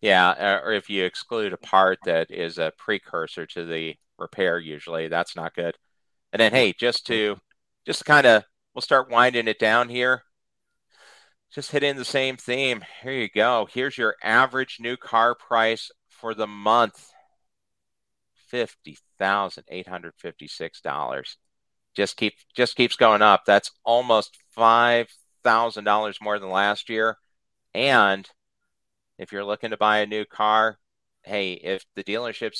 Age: 40-59